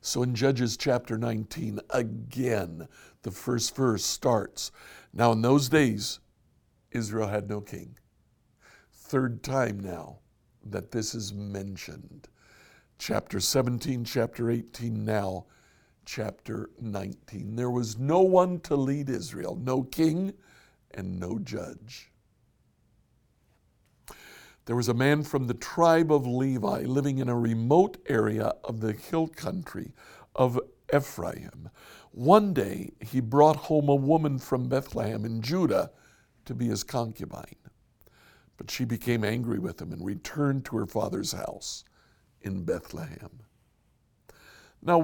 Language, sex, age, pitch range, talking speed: English, male, 60-79, 110-135 Hz, 125 wpm